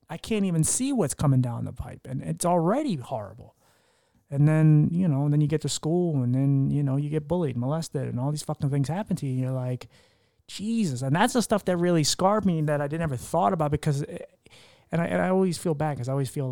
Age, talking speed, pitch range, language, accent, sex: 30-49, 255 wpm, 125-155 Hz, English, American, male